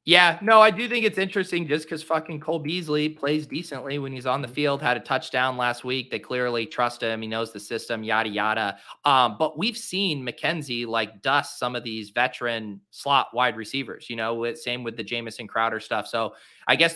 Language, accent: English, American